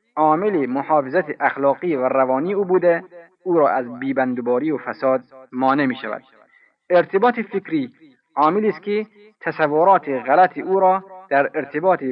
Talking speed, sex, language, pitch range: 140 wpm, male, Persian, 130-175 Hz